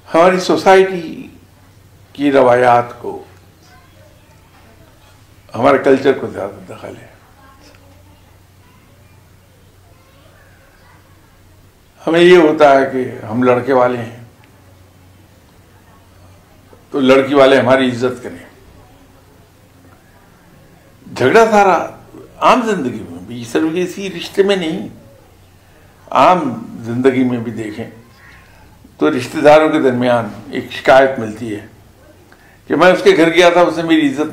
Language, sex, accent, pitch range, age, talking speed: English, male, Indian, 95-135 Hz, 60-79, 105 wpm